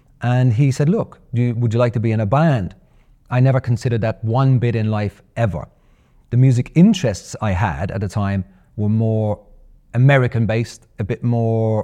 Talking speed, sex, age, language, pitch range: 175 wpm, male, 30-49, English, 105-145 Hz